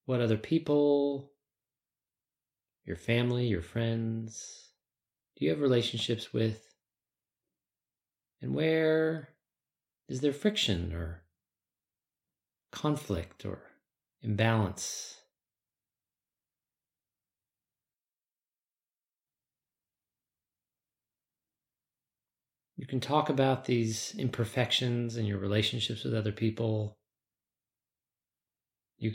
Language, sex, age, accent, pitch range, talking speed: English, male, 30-49, American, 100-140 Hz, 70 wpm